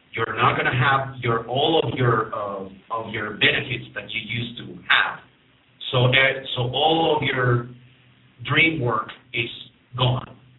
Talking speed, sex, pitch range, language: 160 wpm, male, 120-140 Hz, English